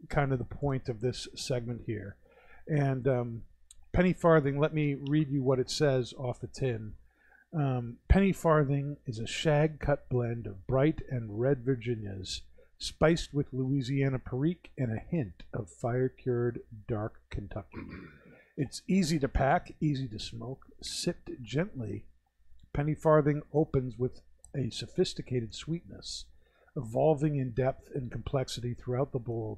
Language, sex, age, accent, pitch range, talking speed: English, male, 50-69, American, 120-145 Hz, 145 wpm